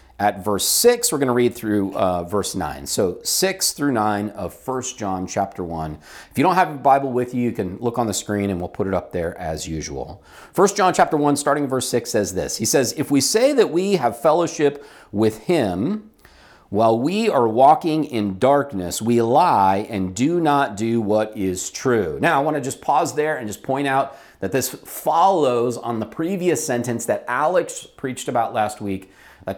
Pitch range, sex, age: 105-150 Hz, male, 40-59